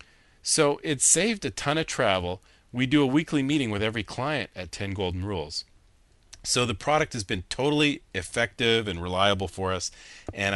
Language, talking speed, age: English, 175 wpm, 40-59